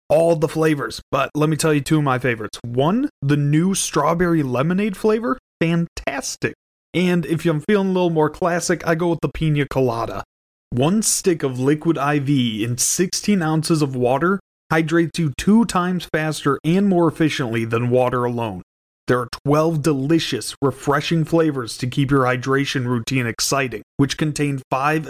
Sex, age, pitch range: male, 30-49, 135-170 Hz